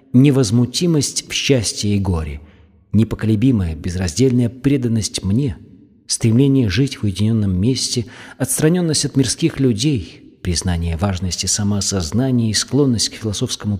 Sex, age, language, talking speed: male, 40-59, Russian, 110 wpm